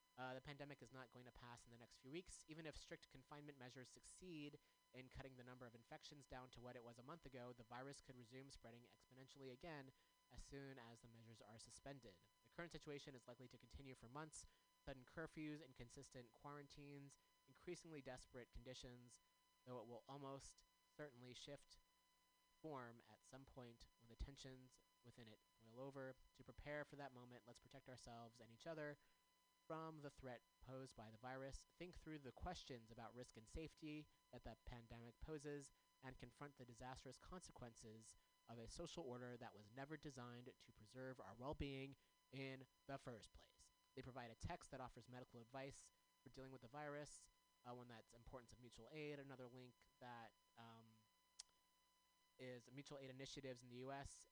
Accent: American